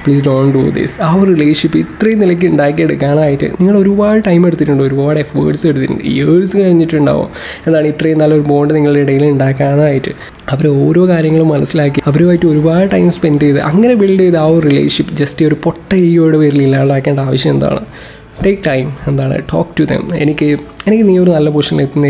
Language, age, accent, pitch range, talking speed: Malayalam, 20-39, native, 145-170 Hz, 160 wpm